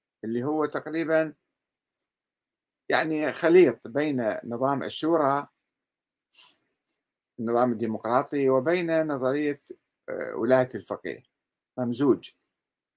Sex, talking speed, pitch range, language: male, 70 wpm, 125-160 Hz, Arabic